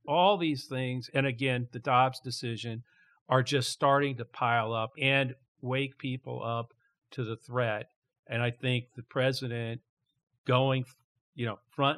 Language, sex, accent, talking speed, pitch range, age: English, male, American, 150 wpm, 115-135 Hz, 50-69